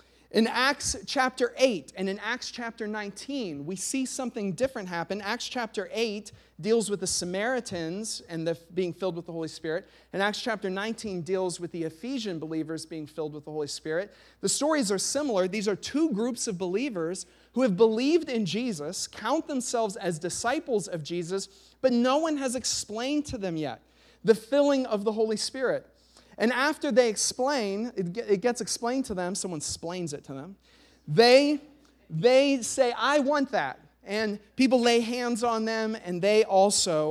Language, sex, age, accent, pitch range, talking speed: English, male, 40-59, American, 185-245 Hz, 175 wpm